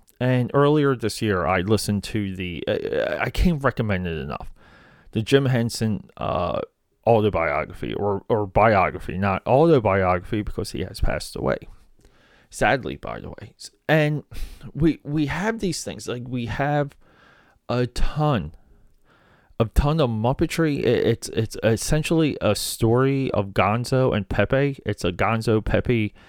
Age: 30-49